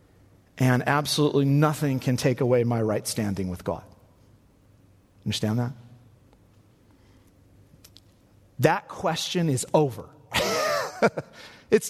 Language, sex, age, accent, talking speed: English, male, 40-59, American, 90 wpm